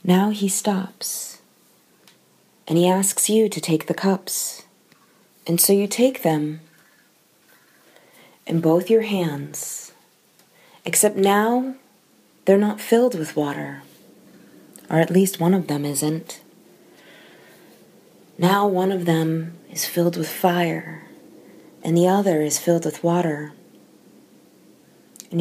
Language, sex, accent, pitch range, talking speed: English, female, American, 160-200 Hz, 120 wpm